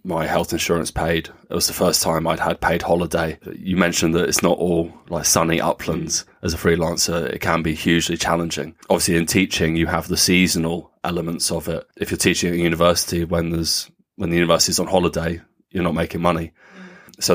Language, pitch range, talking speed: English, 85-90 Hz, 200 wpm